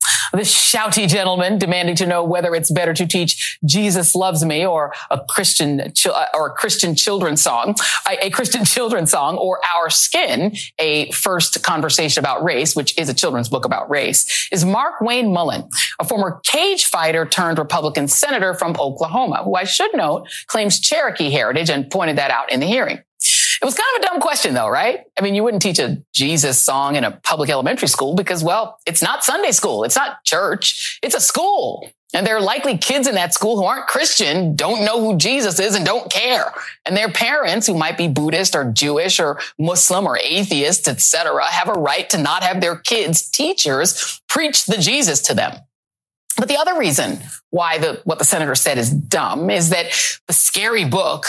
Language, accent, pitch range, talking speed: English, American, 160-215 Hz, 195 wpm